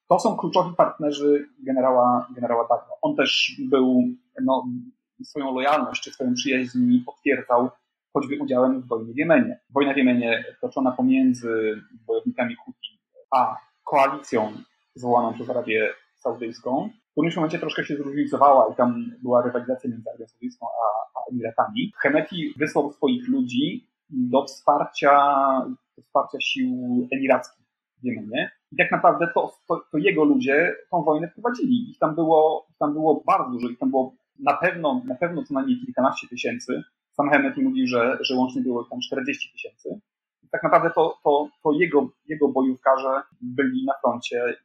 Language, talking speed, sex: Polish, 155 wpm, male